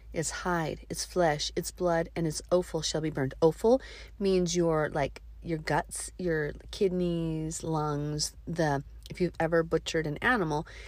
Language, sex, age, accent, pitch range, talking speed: English, female, 40-59, American, 140-180 Hz, 155 wpm